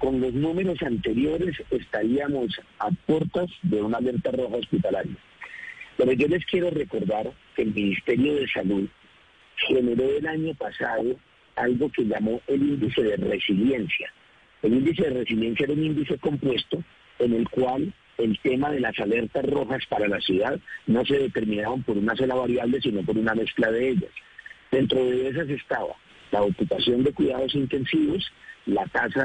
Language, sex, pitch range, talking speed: Spanish, male, 115-150 Hz, 160 wpm